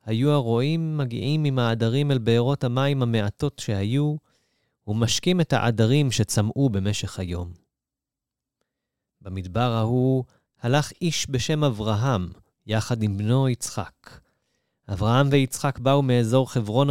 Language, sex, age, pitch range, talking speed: Hebrew, male, 30-49, 100-130 Hz, 110 wpm